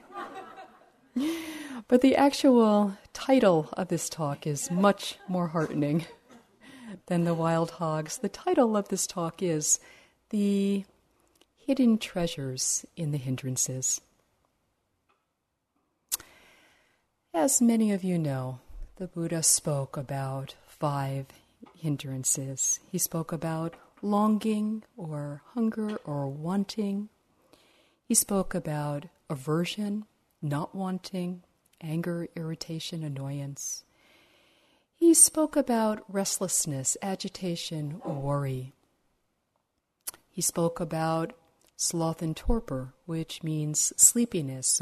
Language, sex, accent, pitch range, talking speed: English, female, American, 145-210 Hz, 95 wpm